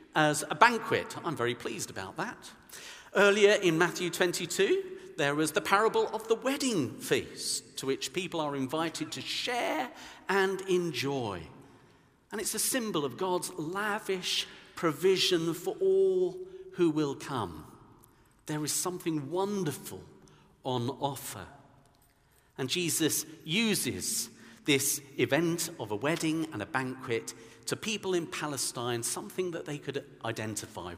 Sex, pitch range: male, 120-190 Hz